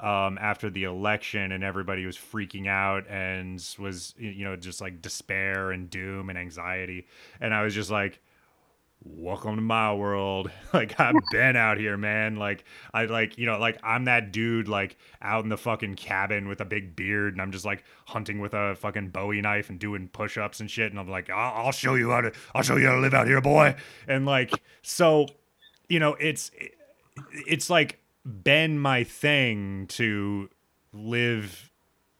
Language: English